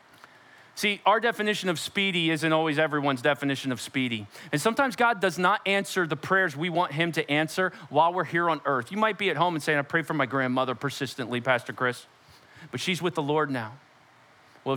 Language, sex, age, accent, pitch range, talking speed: English, male, 40-59, American, 140-195 Hz, 205 wpm